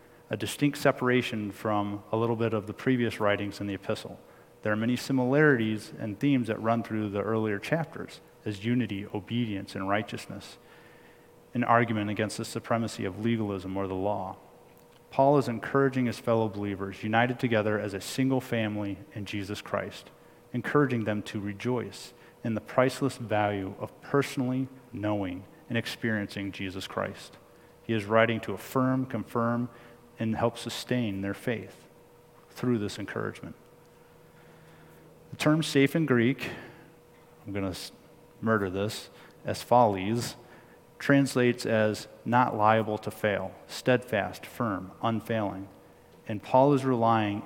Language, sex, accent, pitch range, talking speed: English, male, American, 105-125 Hz, 140 wpm